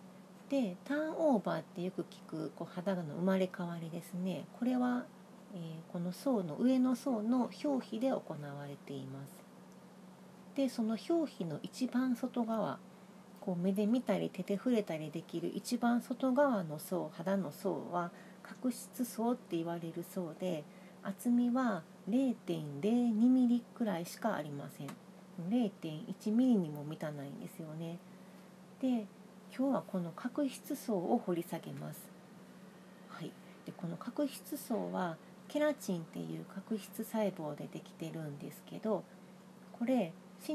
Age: 40-59